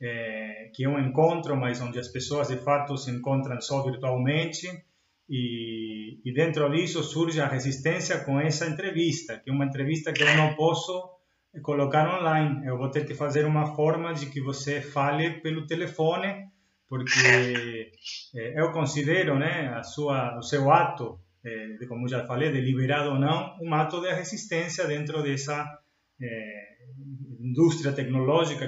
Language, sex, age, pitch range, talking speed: Portuguese, male, 30-49, 125-165 Hz, 155 wpm